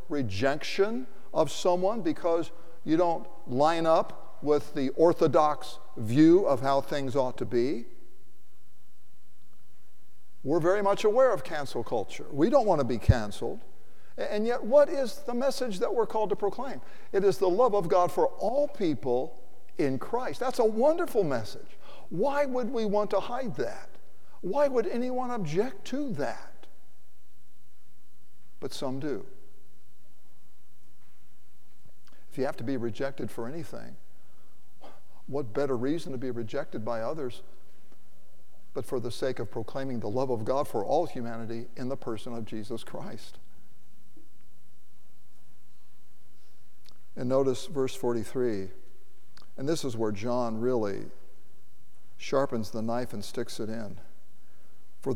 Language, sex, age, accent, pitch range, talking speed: English, male, 60-79, American, 110-175 Hz, 135 wpm